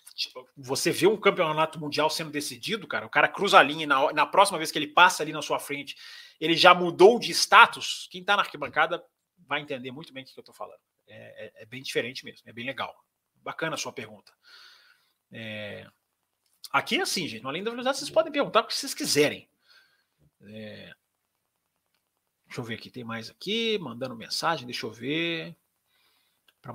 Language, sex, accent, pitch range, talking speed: Portuguese, male, Brazilian, 125-195 Hz, 195 wpm